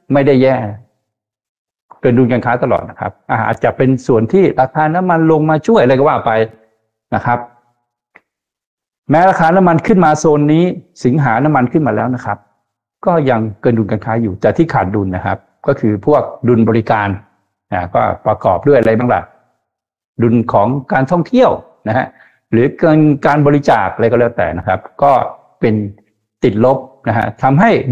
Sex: male